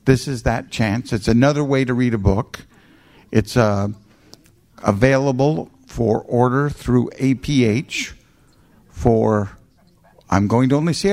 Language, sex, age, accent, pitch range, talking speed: English, male, 50-69, American, 110-140 Hz, 130 wpm